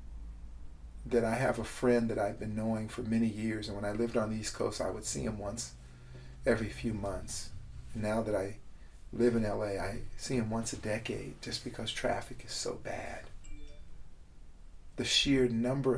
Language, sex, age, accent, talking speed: English, male, 40-59, American, 185 wpm